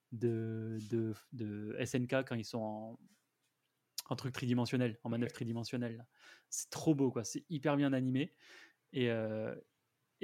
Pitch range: 115-140 Hz